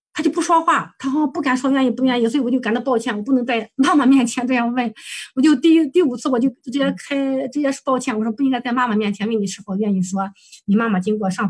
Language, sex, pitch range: Chinese, female, 195-265 Hz